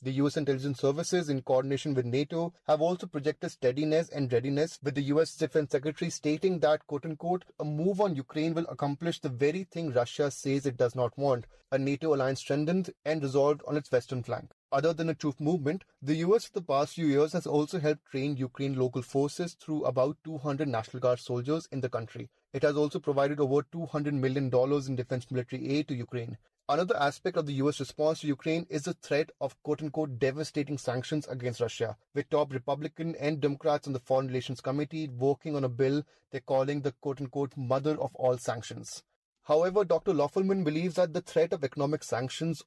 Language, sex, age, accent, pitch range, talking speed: Hindi, male, 30-49, native, 135-160 Hz, 200 wpm